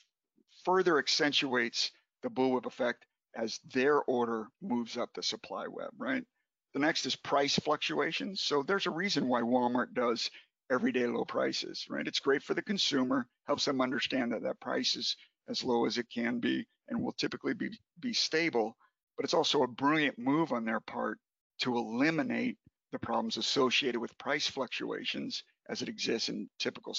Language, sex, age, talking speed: English, male, 50-69, 170 wpm